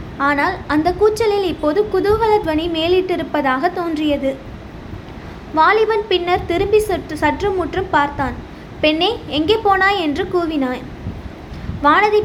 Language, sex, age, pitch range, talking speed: Tamil, female, 20-39, 310-395 Hz, 95 wpm